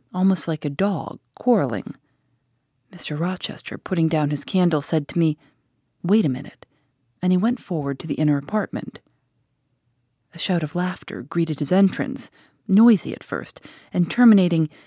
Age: 40-59